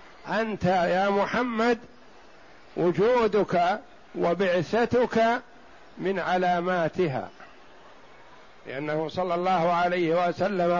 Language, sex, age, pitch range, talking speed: Arabic, male, 60-79, 175-210 Hz, 65 wpm